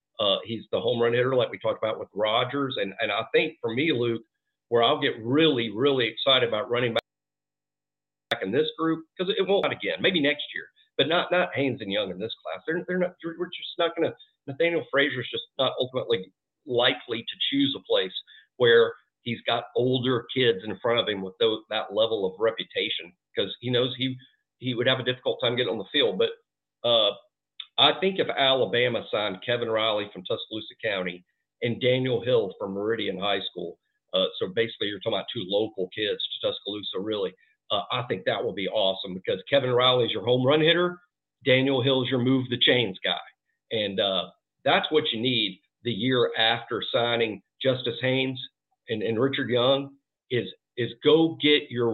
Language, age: English, 50-69